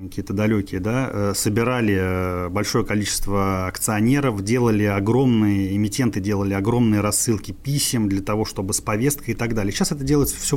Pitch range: 100-115 Hz